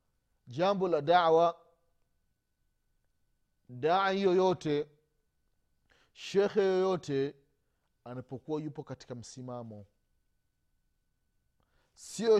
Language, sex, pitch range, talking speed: Swahili, male, 105-170 Hz, 60 wpm